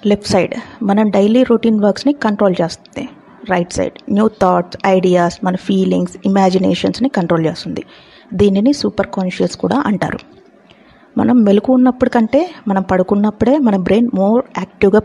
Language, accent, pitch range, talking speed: Telugu, native, 185-235 Hz, 130 wpm